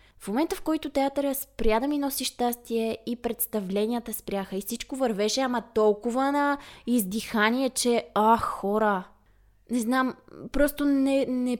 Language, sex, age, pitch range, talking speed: Bulgarian, female, 20-39, 210-280 Hz, 145 wpm